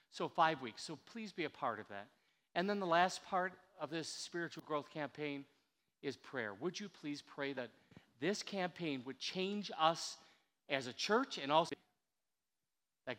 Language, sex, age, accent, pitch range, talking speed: English, male, 50-69, American, 130-170 Hz, 175 wpm